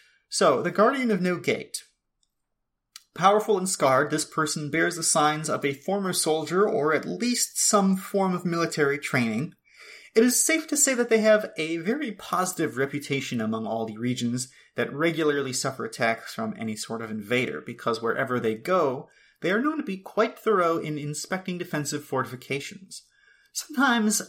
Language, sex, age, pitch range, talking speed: English, male, 30-49, 145-205 Hz, 165 wpm